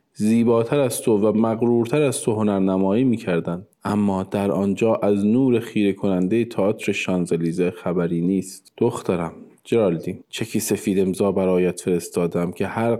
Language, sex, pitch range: Persian, male, 95-115 Hz